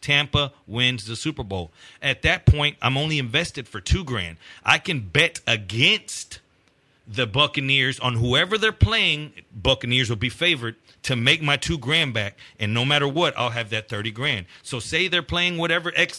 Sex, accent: male, American